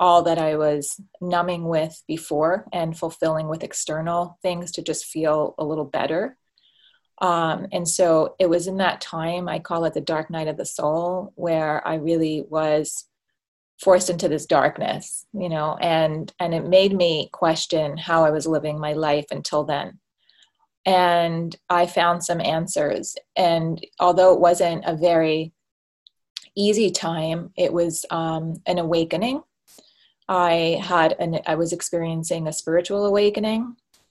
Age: 20-39